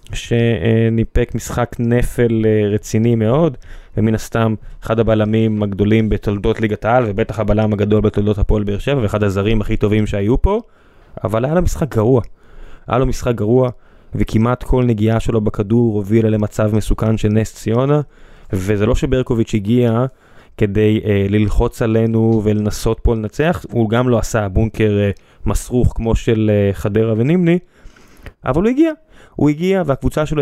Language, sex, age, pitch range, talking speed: Hebrew, male, 20-39, 105-125 Hz, 150 wpm